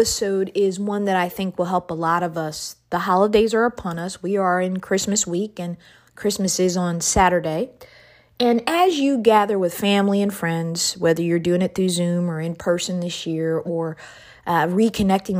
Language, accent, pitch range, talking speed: English, American, 170-195 Hz, 185 wpm